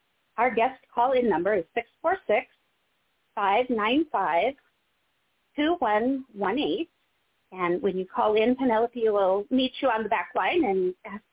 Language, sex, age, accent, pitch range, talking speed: English, female, 30-49, American, 205-290 Hz, 110 wpm